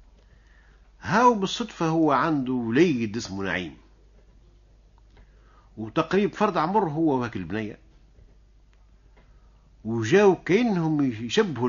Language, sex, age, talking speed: Arabic, male, 50-69, 80 wpm